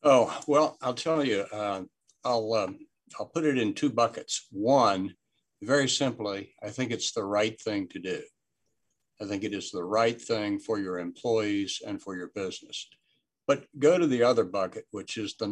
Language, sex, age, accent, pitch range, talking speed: English, male, 60-79, American, 105-140 Hz, 185 wpm